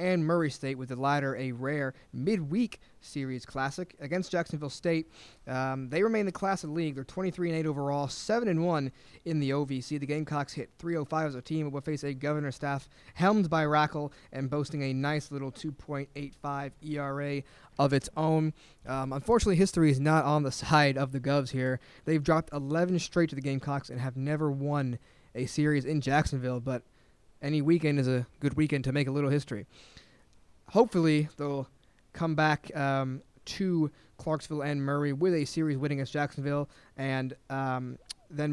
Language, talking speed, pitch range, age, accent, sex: English, 180 wpm, 135-155 Hz, 20-39, American, male